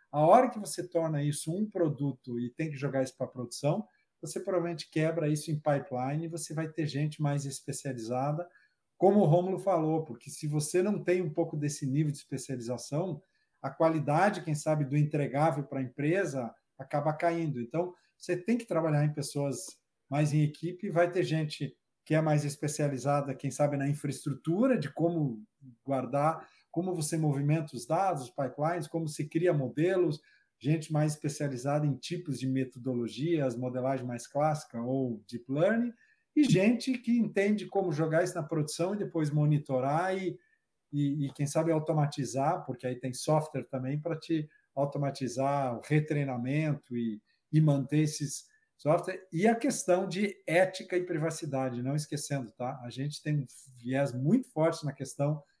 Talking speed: 165 wpm